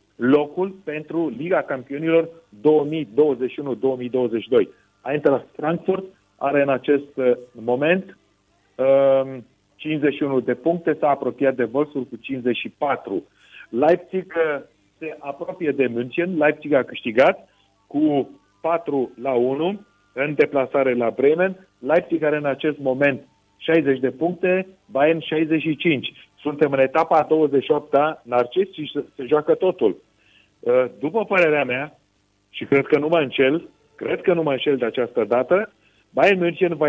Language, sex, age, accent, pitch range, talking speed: Romanian, male, 40-59, native, 130-160 Hz, 125 wpm